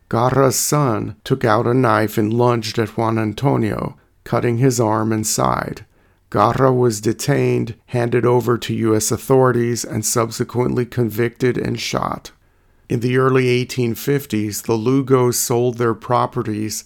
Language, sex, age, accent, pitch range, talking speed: English, male, 50-69, American, 115-130 Hz, 135 wpm